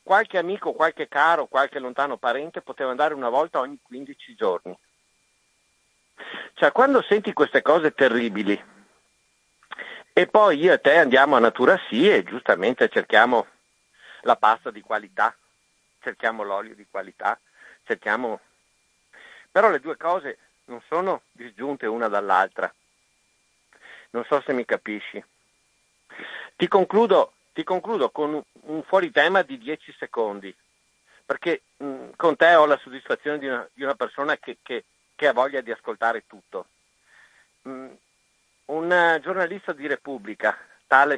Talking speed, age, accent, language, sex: 130 wpm, 50-69, native, Italian, male